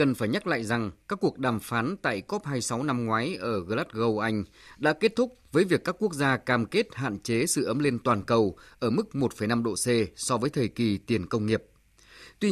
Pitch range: 115-160 Hz